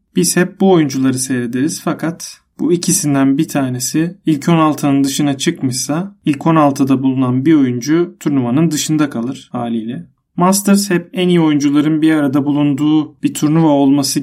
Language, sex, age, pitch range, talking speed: Turkish, male, 40-59, 145-175 Hz, 145 wpm